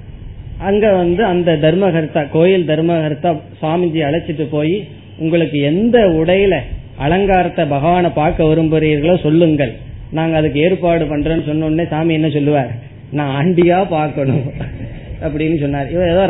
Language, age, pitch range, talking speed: Tamil, 20-39, 145-185 Hz, 120 wpm